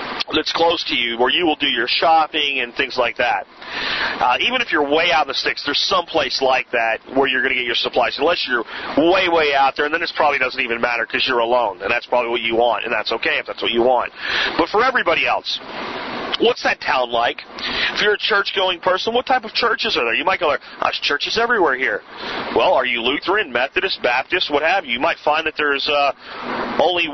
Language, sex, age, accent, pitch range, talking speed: English, male, 40-59, American, 145-190 Hz, 235 wpm